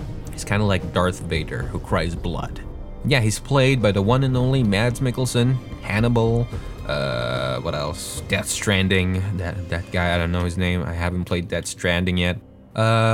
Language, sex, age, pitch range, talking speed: English, male, 20-39, 90-125 Hz, 185 wpm